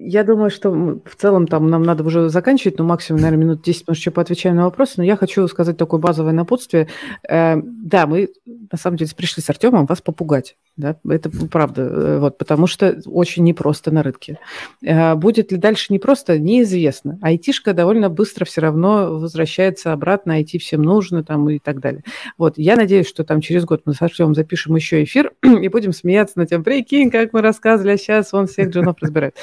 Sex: female